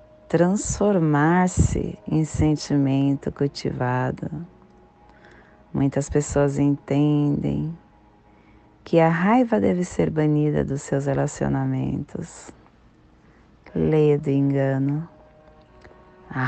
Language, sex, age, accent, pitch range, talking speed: Portuguese, female, 40-59, Brazilian, 105-155 Hz, 75 wpm